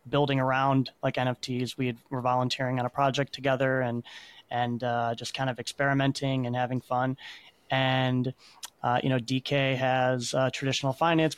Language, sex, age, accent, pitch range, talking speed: English, male, 20-39, American, 125-140 Hz, 160 wpm